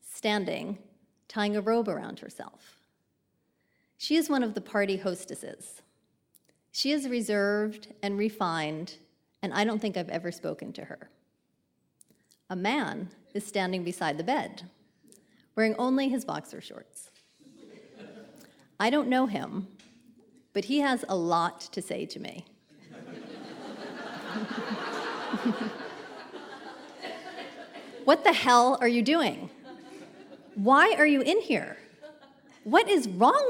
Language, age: English, 40-59